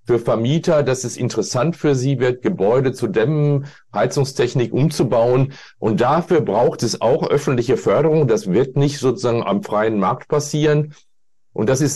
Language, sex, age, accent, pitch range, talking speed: German, male, 40-59, German, 120-150 Hz, 155 wpm